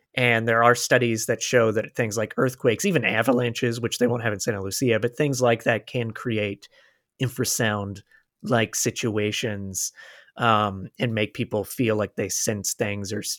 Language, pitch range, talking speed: English, 110-135 Hz, 170 wpm